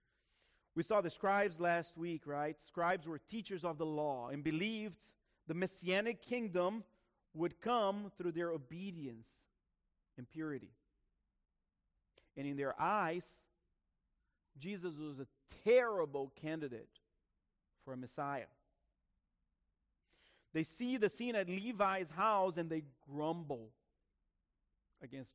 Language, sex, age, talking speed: English, male, 40-59, 115 wpm